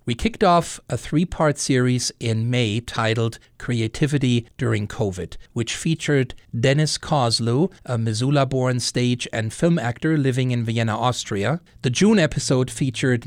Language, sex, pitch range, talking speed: English, male, 115-150 Hz, 135 wpm